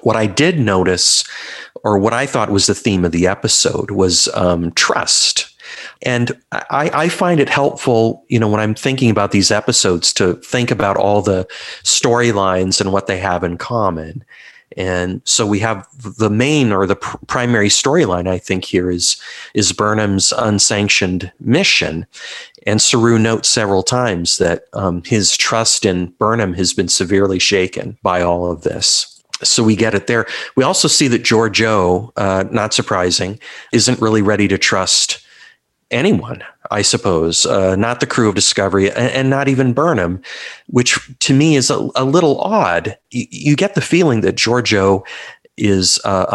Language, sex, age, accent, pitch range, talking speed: English, male, 40-59, American, 95-120 Hz, 165 wpm